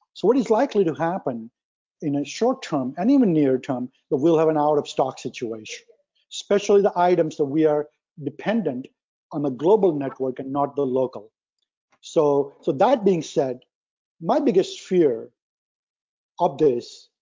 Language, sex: English, male